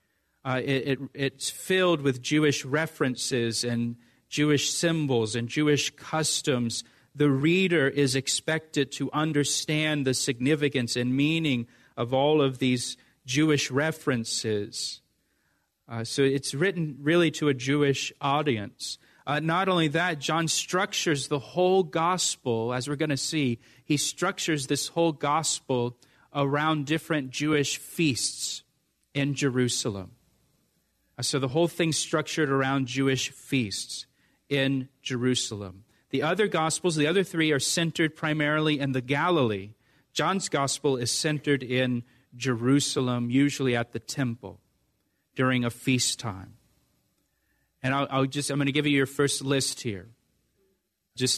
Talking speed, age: 130 wpm, 40-59